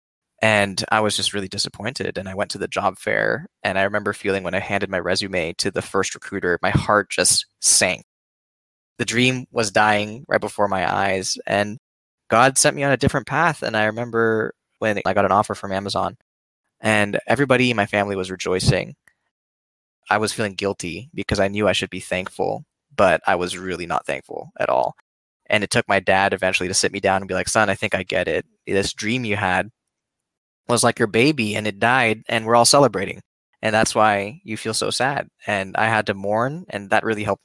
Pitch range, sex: 100-115 Hz, male